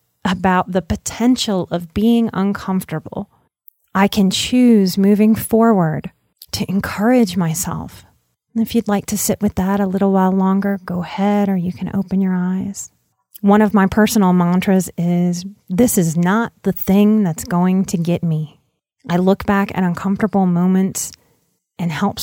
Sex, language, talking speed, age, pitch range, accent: female, English, 155 wpm, 30-49, 175-205 Hz, American